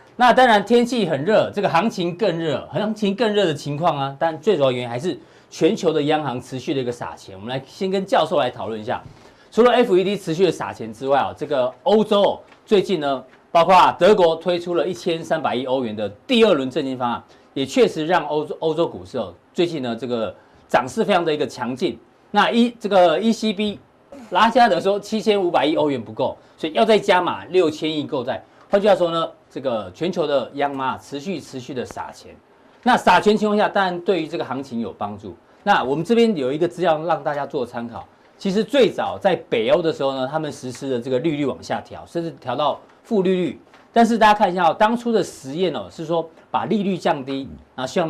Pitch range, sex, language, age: 140-205 Hz, male, Chinese, 40-59